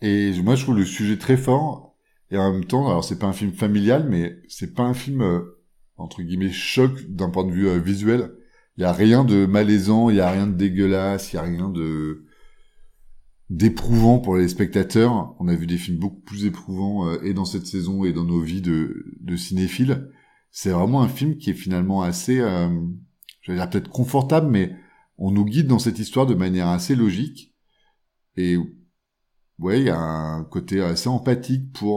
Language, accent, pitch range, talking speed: French, French, 85-115 Hz, 205 wpm